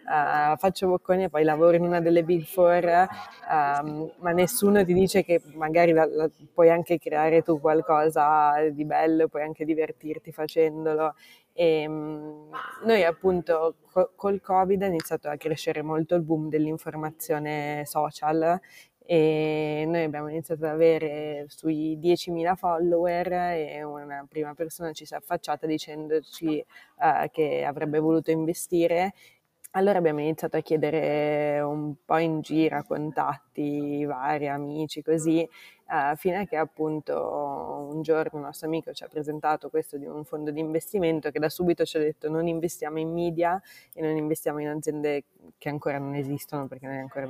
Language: Italian